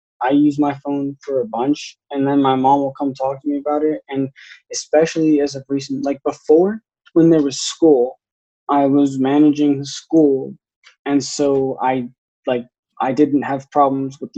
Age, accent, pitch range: 20-39, American, 130-145 Hz